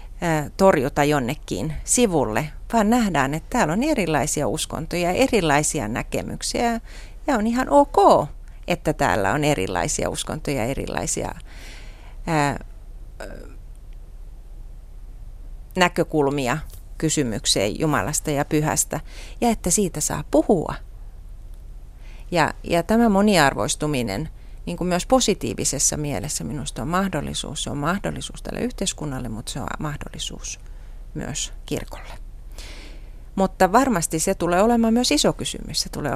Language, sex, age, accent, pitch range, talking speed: Finnish, female, 30-49, native, 140-205 Hz, 110 wpm